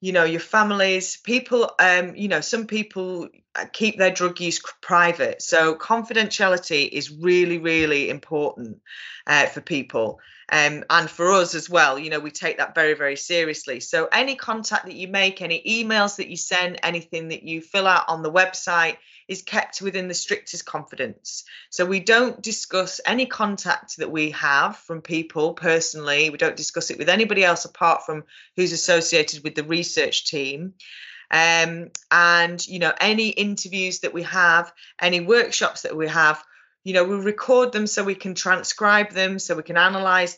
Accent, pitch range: British, 160-190 Hz